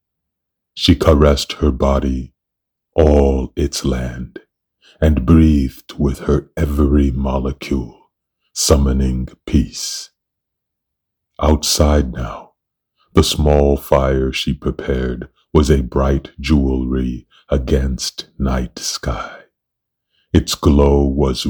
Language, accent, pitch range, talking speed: English, American, 65-75 Hz, 90 wpm